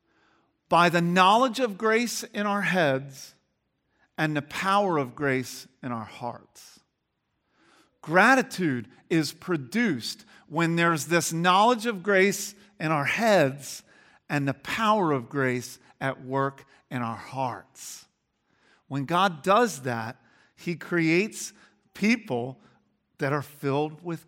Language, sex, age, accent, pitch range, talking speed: English, male, 50-69, American, 140-200 Hz, 120 wpm